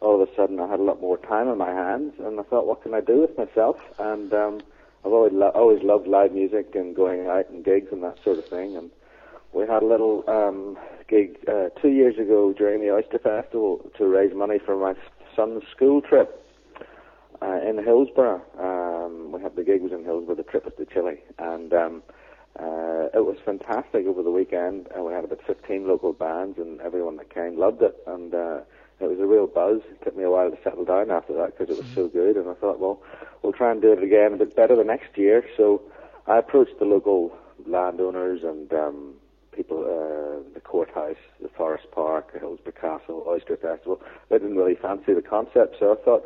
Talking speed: 220 wpm